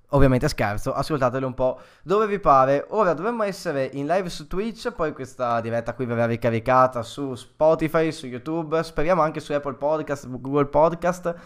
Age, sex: 10-29, male